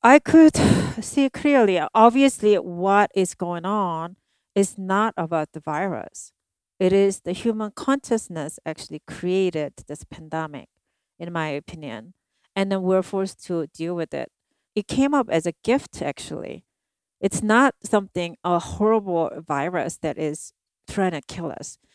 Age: 40-59